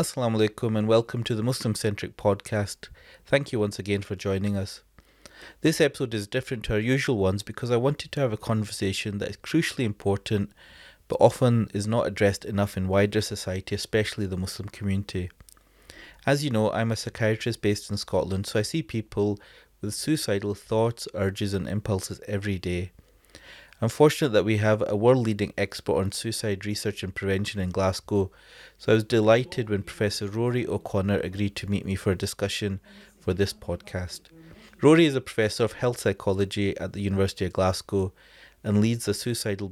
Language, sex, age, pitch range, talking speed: English, male, 30-49, 95-115 Hz, 180 wpm